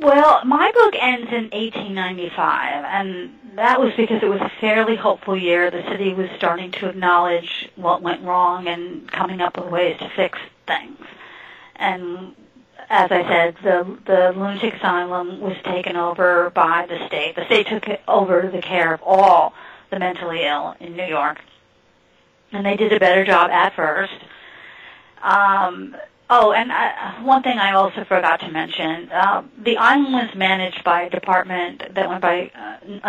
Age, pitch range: 40-59, 175-205 Hz